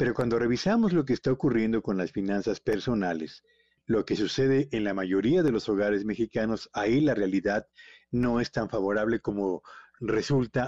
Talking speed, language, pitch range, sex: 170 wpm, Spanish, 115-155 Hz, male